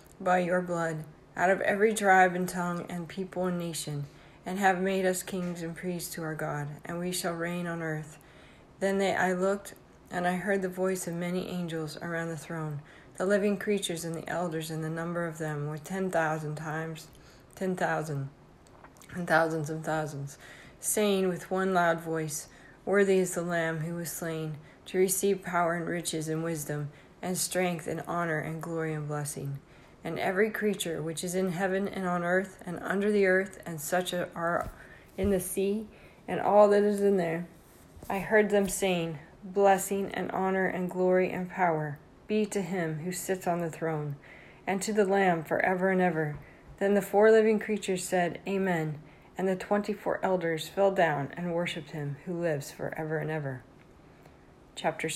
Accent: American